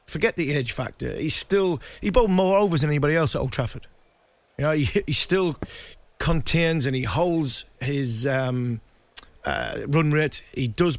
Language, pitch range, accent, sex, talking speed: English, 130-160 Hz, British, male, 175 wpm